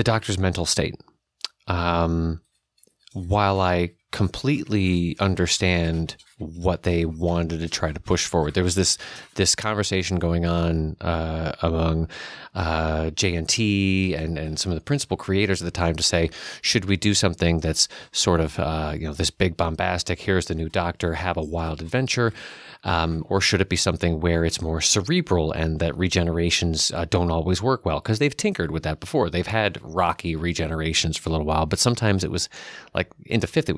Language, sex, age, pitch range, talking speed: English, male, 30-49, 80-95 Hz, 180 wpm